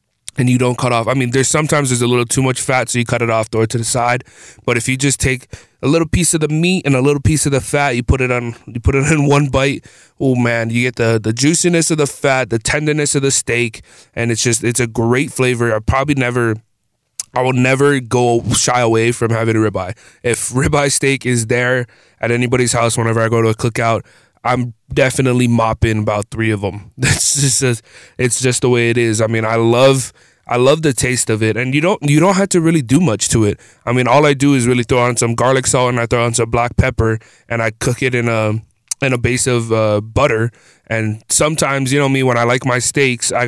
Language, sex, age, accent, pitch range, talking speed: English, male, 20-39, American, 115-135 Hz, 245 wpm